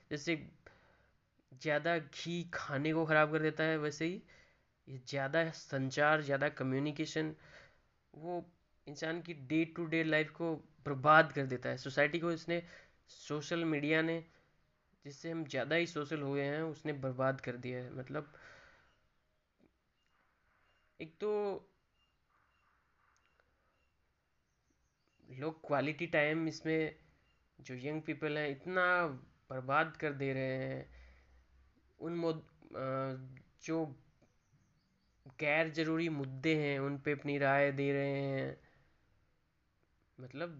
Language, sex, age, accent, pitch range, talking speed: Hindi, male, 20-39, native, 135-160 Hz, 110 wpm